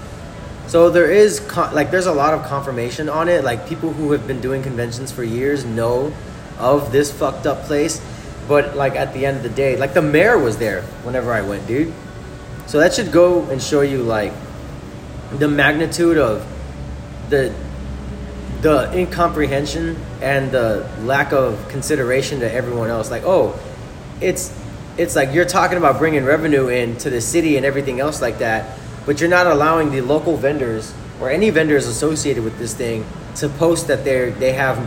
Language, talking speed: English, 175 wpm